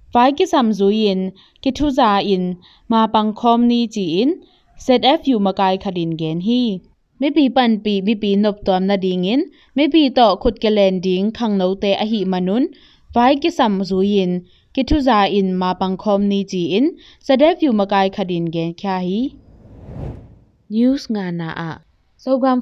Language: English